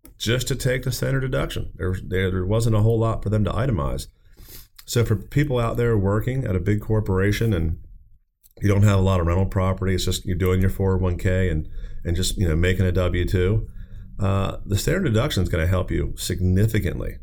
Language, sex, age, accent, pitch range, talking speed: English, male, 30-49, American, 90-105 Hz, 200 wpm